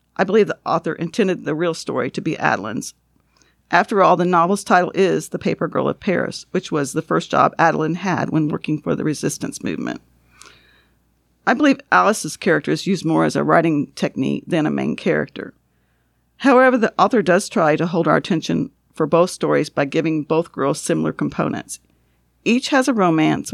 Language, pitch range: English, 140-195 Hz